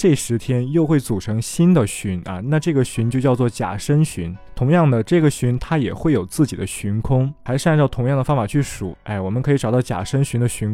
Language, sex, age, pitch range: Chinese, male, 20-39, 100-145 Hz